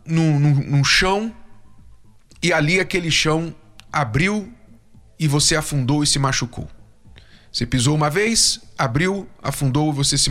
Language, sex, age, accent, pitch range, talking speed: Portuguese, male, 40-59, Brazilian, 120-185 Hz, 135 wpm